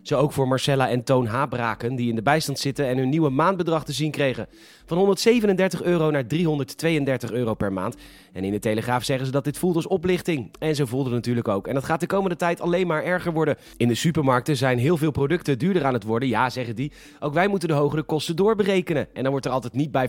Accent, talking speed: Dutch, 245 wpm